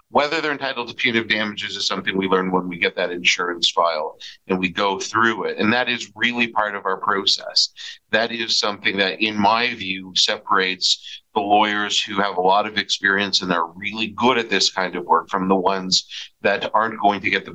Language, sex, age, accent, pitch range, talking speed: English, male, 50-69, American, 105-135 Hz, 215 wpm